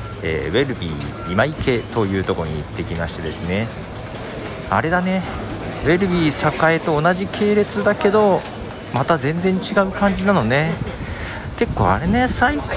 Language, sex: Japanese, male